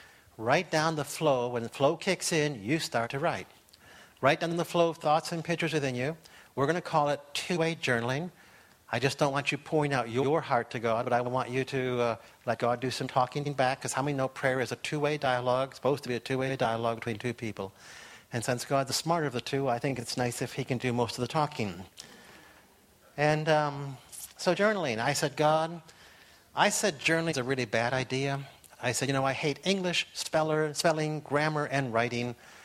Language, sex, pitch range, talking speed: English, male, 125-155 Hz, 220 wpm